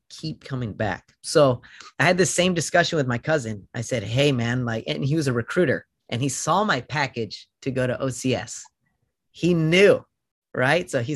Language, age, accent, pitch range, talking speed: English, 30-49, American, 115-150 Hz, 195 wpm